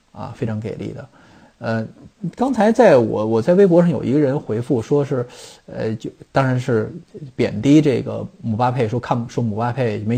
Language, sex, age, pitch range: Chinese, male, 20-39, 110-135 Hz